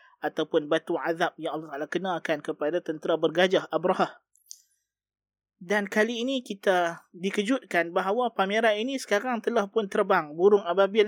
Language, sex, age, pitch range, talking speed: Malay, male, 20-39, 165-210 Hz, 135 wpm